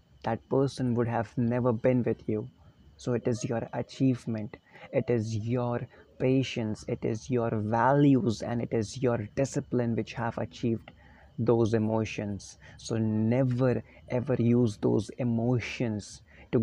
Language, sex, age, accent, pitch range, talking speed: English, male, 30-49, Indian, 115-135 Hz, 135 wpm